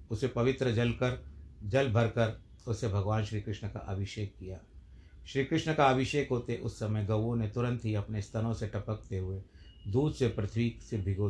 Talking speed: 180 wpm